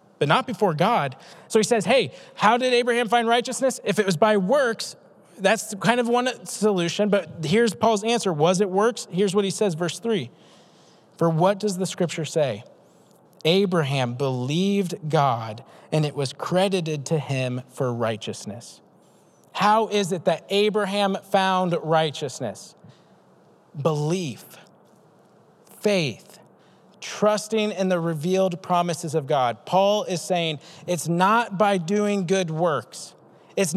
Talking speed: 140 wpm